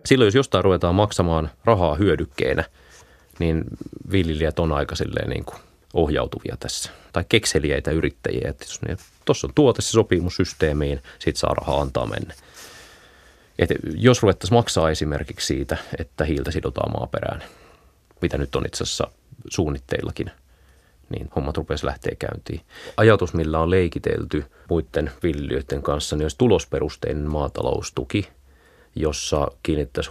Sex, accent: male, native